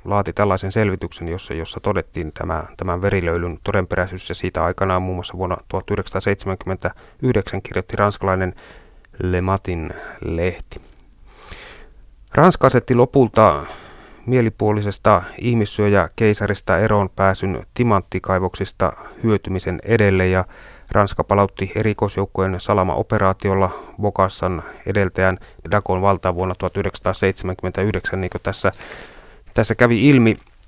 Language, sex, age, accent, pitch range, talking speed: Finnish, male, 30-49, native, 95-105 Hz, 95 wpm